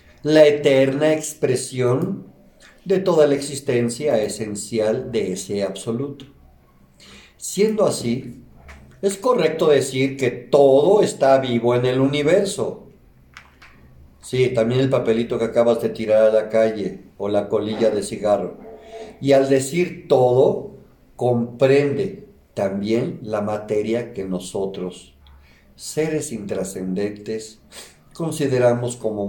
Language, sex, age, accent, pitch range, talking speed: Spanish, male, 50-69, Mexican, 100-140 Hz, 110 wpm